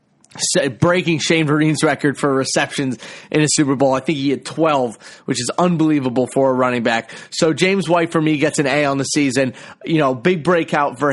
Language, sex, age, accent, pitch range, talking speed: English, male, 30-49, American, 135-165 Hz, 205 wpm